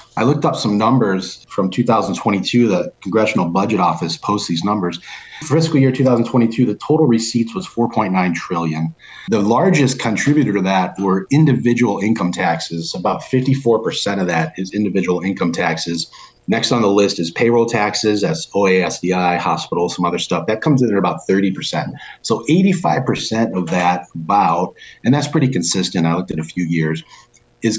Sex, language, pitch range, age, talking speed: male, English, 95-135 Hz, 40-59, 165 wpm